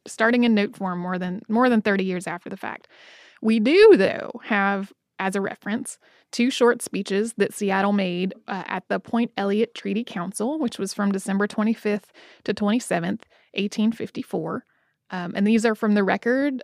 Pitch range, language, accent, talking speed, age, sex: 200-235 Hz, English, American, 175 wpm, 20-39, female